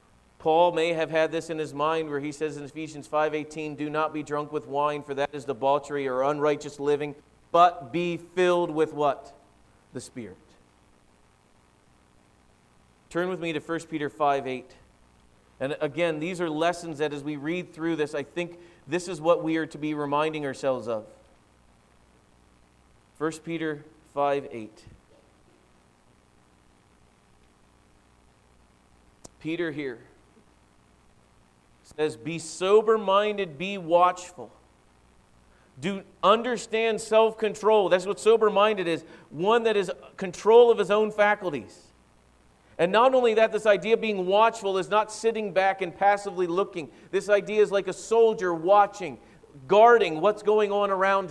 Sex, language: male, English